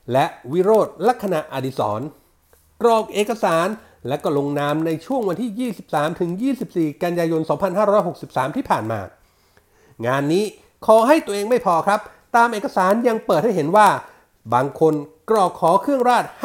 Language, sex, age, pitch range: Thai, male, 60-79, 155-230 Hz